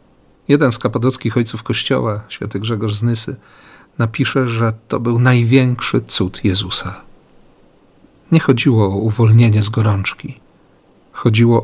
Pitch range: 110-135 Hz